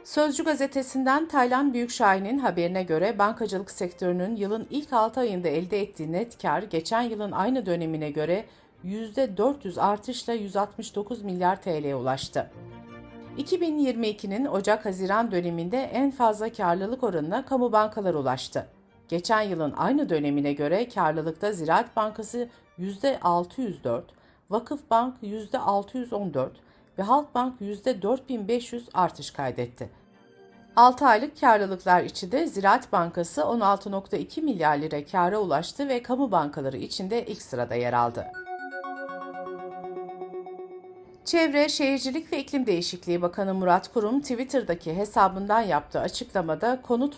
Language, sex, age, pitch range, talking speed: Turkish, female, 50-69, 175-250 Hz, 110 wpm